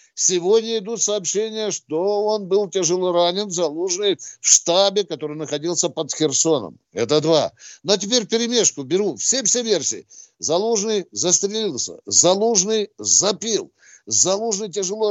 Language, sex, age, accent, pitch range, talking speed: Russian, male, 60-79, native, 170-220 Hz, 115 wpm